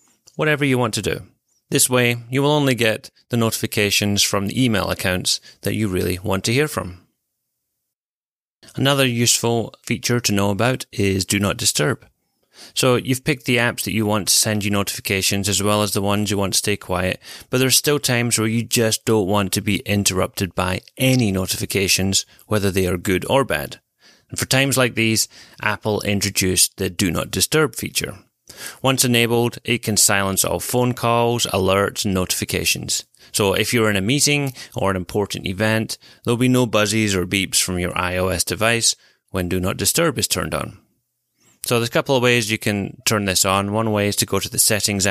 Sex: male